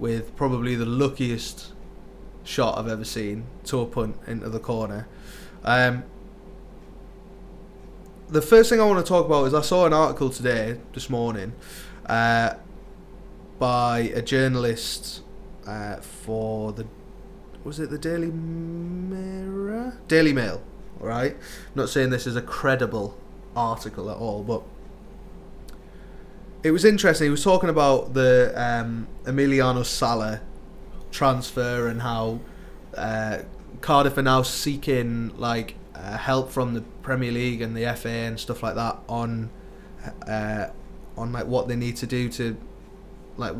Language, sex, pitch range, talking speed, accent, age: English, male, 115-150 Hz, 140 wpm, British, 20-39